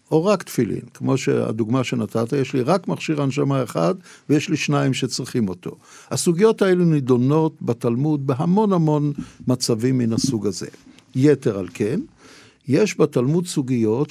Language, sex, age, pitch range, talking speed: Hebrew, male, 60-79, 125-175 Hz, 140 wpm